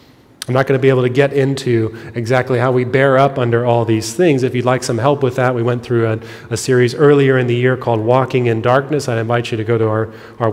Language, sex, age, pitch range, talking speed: English, male, 30-49, 110-130 Hz, 270 wpm